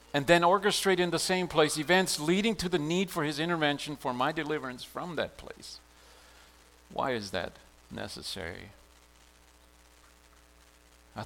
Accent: American